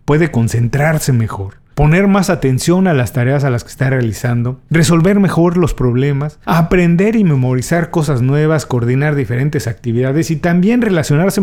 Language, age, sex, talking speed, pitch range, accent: Spanish, 40-59, male, 150 wpm, 125-180 Hz, Mexican